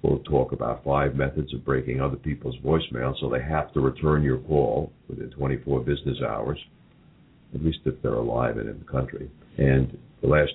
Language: English